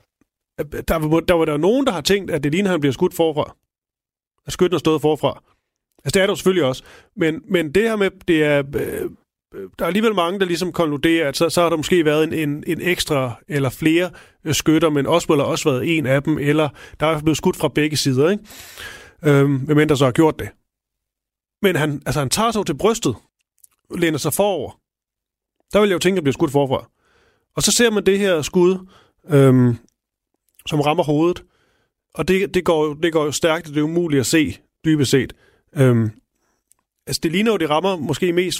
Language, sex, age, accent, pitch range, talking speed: Danish, male, 30-49, native, 140-175 Hz, 220 wpm